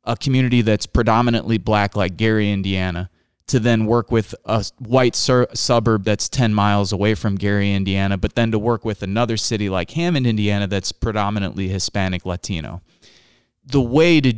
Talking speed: 165 wpm